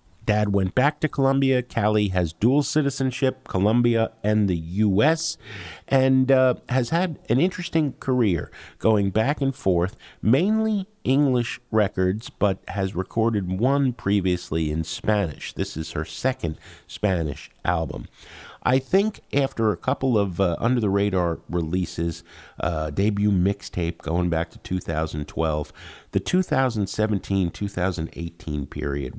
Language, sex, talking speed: English, male, 125 wpm